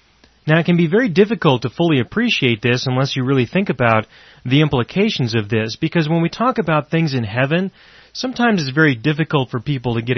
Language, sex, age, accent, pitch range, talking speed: English, male, 30-49, American, 120-160 Hz, 205 wpm